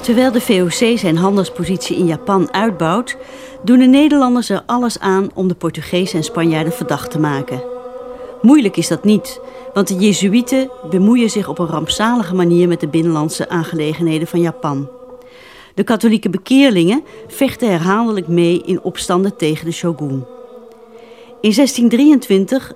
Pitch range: 175-245 Hz